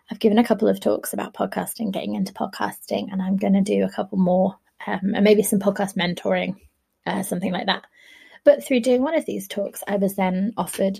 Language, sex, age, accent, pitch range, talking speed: English, female, 20-39, British, 190-225 Hz, 220 wpm